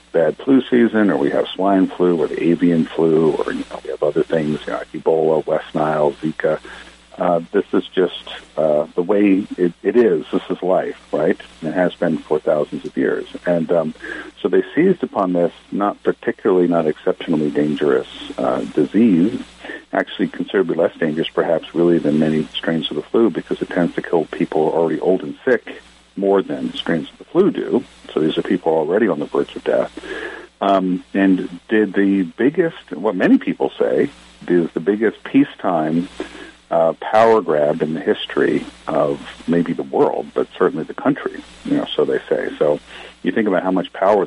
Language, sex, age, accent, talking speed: English, male, 50-69, American, 190 wpm